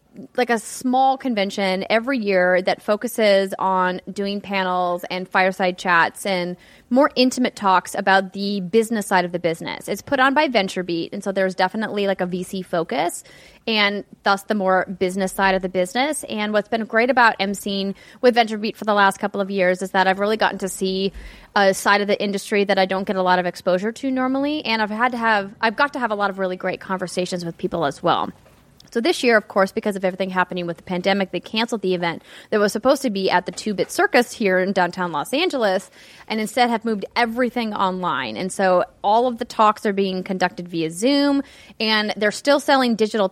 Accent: American